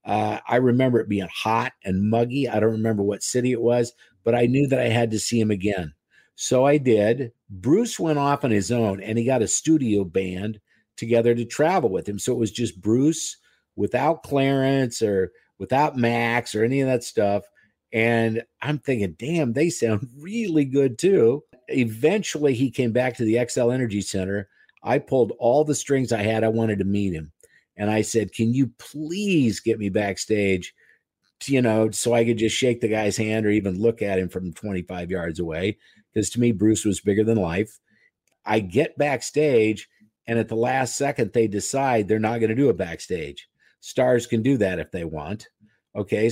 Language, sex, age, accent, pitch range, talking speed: English, male, 50-69, American, 105-130 Hz, 195 wpm